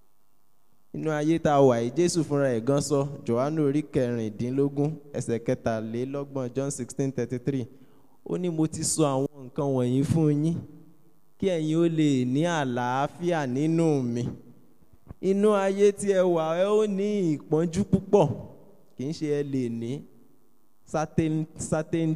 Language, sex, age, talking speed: English, male, 20-39, 140 wpm